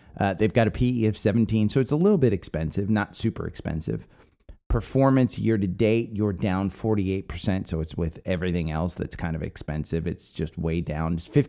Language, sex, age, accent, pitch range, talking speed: English, male, 30-49, American, 85-110 Hz, 195 wpm